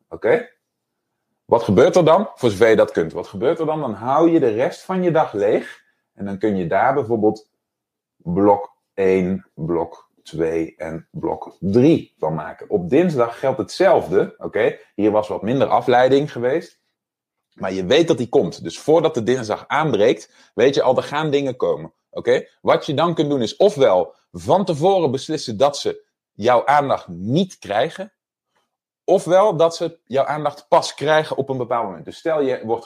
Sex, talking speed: male, 180 wpm